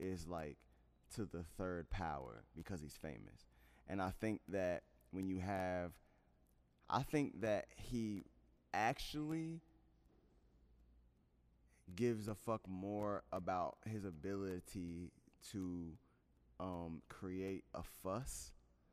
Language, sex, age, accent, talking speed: English, male, 20-39, American, 105 wpm